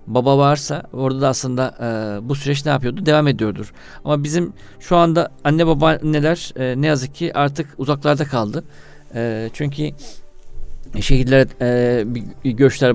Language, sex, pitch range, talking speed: Turkish, male, 125-150 Hz, 140 wpm